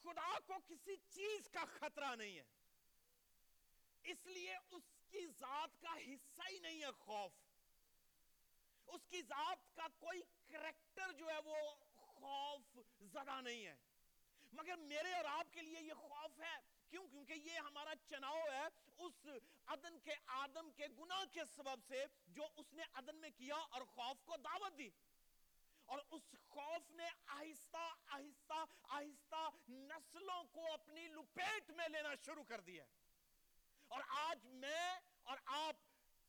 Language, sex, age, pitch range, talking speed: Urdu, male, 40-59, 275-330 Hz, 145 wpm